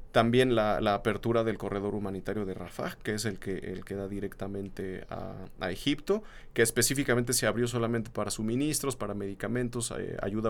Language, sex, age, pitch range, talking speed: Spanish, male, 40-59, 105-125 Hz, 175 wpm